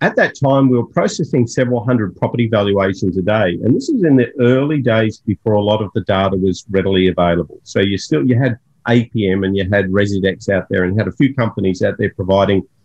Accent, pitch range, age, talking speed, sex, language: Australian, 100-120 Hz, 50-69, 225 wpm, male, English